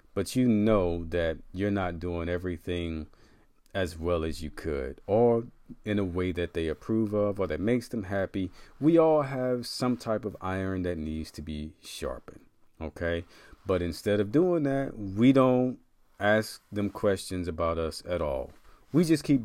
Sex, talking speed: male, 175 wpm